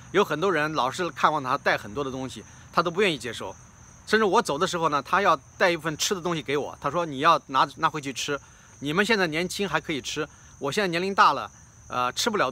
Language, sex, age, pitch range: Chinese, male, 30-49, 115-165 Hz